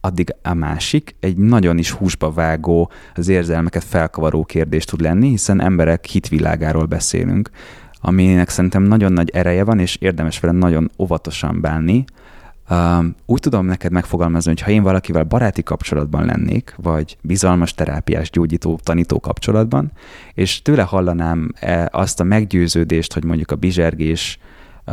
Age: 30-49